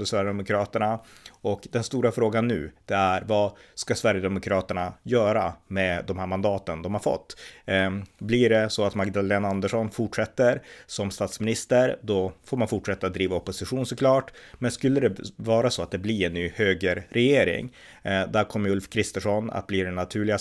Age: 30-49